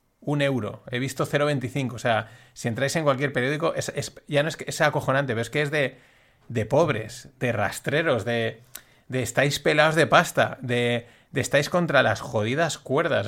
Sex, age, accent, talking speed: male, 30-49, Spanish, 190 wpm